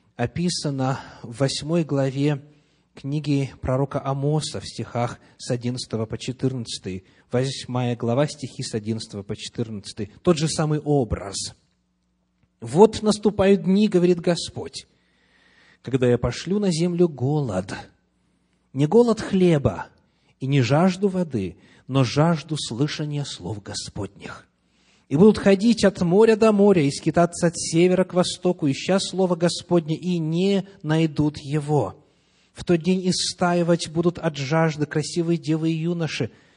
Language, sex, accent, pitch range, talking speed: Russian, male, native, 135-185 Hz, 130 wpm